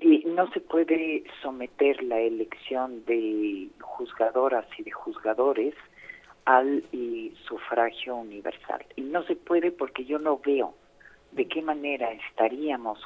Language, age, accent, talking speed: Spanish, 50-69, Mexican, 130 wpm